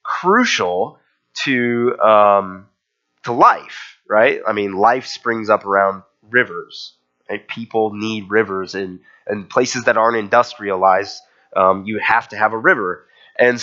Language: English